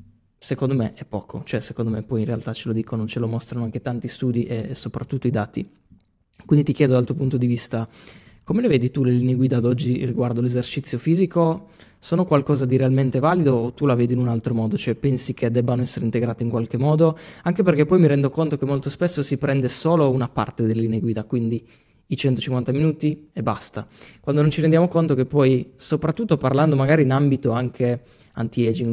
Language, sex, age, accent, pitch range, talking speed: Italian, male, 20-39, native, 120-145 Hz, 215 wpm